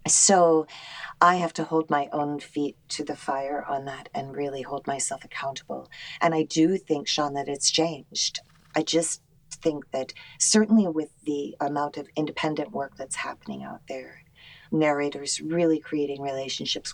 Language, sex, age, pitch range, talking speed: English, female, 40-59, 140-165 Hz, 160 wpm